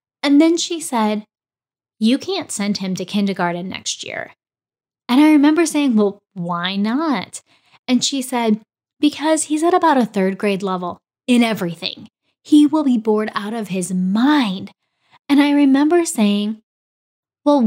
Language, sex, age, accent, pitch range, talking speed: English, female, 10-29, American, 210-290 Hz, 155 wpm